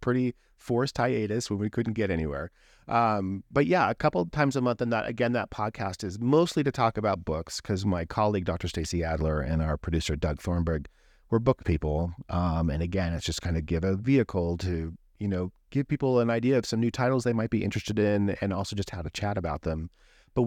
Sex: male